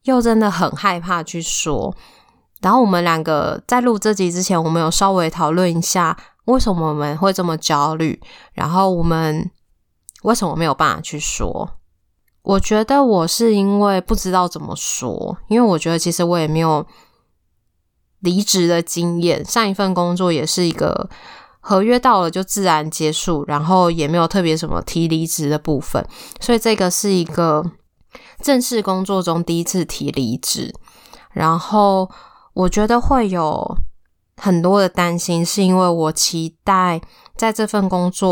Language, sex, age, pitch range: Chinese, female, 20-39, 160-195 Hz